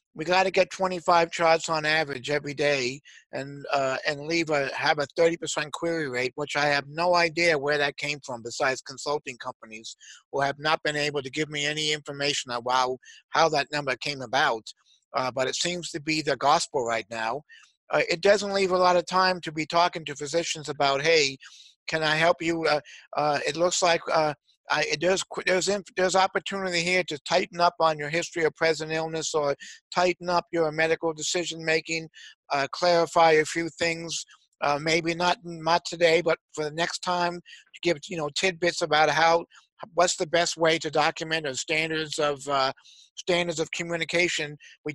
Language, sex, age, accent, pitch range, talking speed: English, male, 50-69, American, 145-170 Hz, 185 wpm